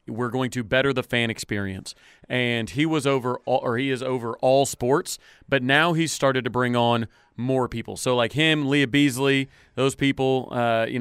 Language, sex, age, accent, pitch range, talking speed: English, male, 30-49, American, 120-145 Hz, 195 wpm